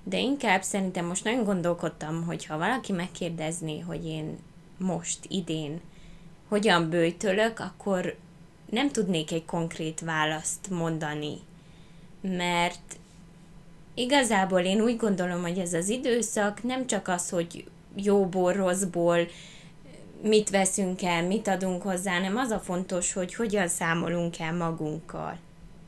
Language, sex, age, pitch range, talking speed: Hungarian, female, 20-39, 165-195 Hz, 125 wpm